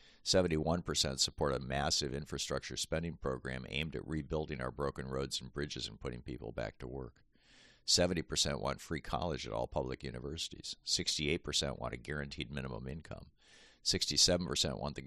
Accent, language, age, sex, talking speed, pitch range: American, English, 50-69, male, 145 wpm, 65-80 Hz